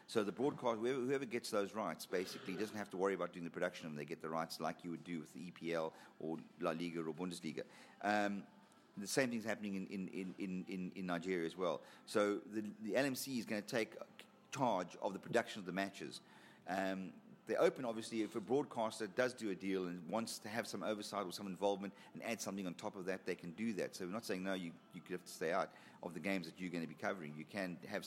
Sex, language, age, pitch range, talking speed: male, English, 40-59, 85-105 Hz, 260 wpm